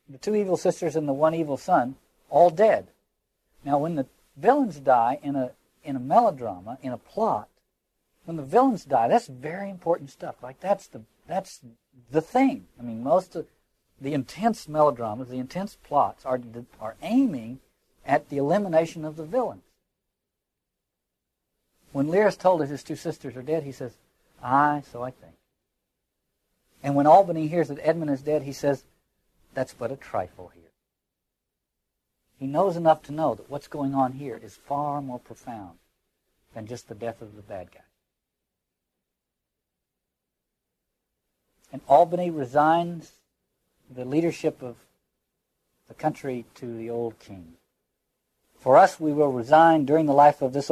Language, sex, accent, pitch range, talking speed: English, male, American, 130-165 Hz, 155 wpm